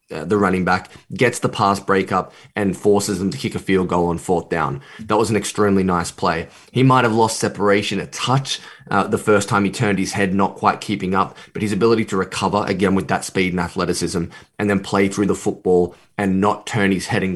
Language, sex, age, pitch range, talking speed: English, male, 20-39, 95-115 Hz, 225 wpm